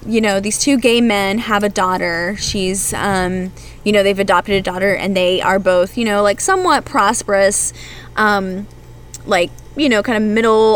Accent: American